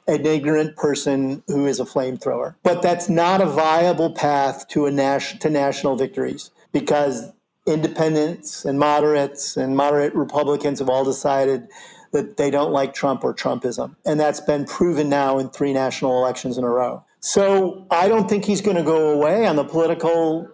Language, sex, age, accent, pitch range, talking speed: English, male, 50-69, American, 140-165 Hz, 175 wpm